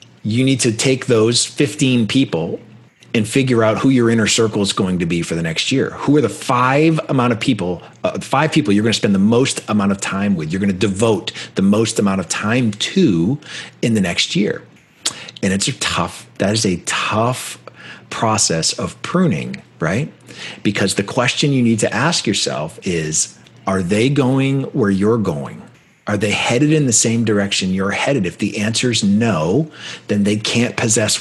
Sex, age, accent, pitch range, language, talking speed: male, 40-59, American, 100-130 Hz, English, 190 wpm